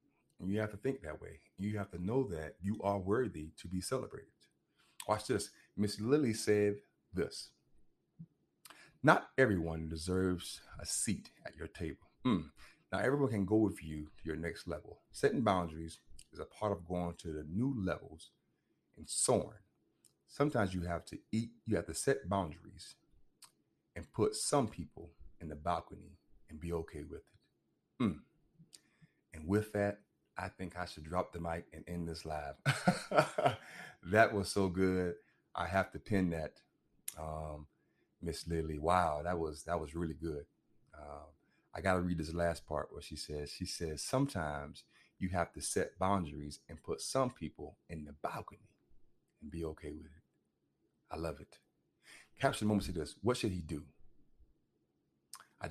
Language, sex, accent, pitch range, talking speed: English, male, American, 80-105 Hz, 165 wpm